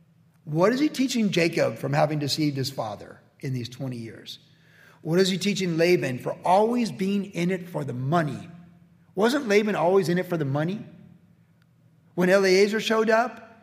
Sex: male